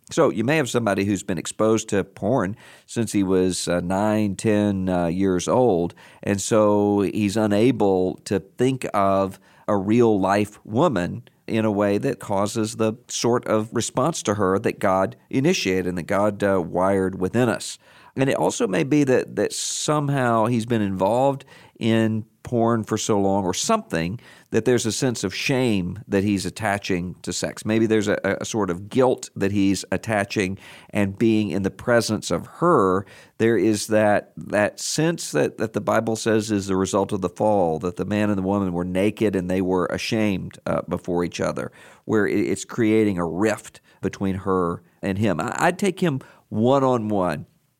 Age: 50-69